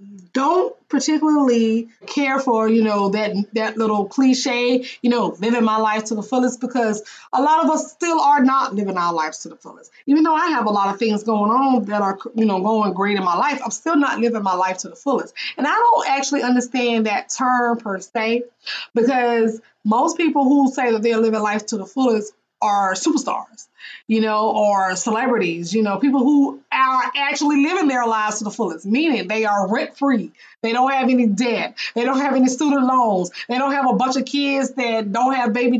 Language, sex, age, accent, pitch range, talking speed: English, female, 20-39, American, 220-270 Hz, 210 wpm